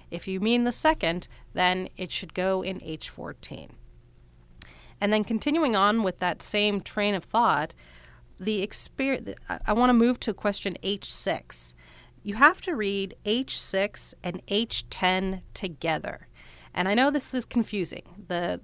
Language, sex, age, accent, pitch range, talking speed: English, female, 30-49, American, 180-220 Hz, 150 wpm